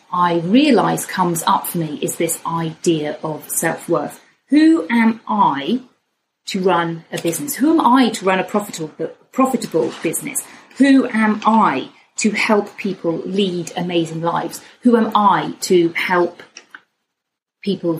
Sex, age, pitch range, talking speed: female, 30-49, 175-225 Hz, 140 wpm